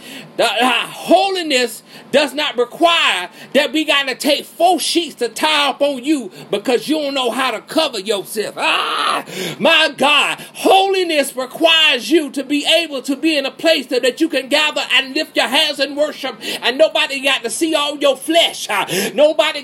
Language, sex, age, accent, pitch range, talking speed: English, male, 40-59, American, 260-320 Hz, 185 wpm